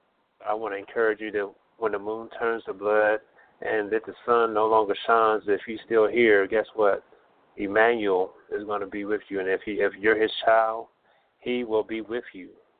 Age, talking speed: 30-49, 205 wpm